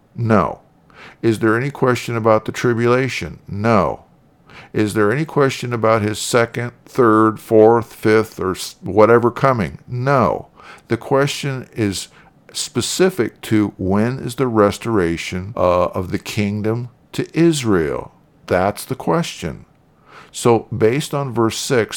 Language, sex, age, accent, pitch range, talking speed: English, male, 50-69, American, 95-120 Hz, 125 wpm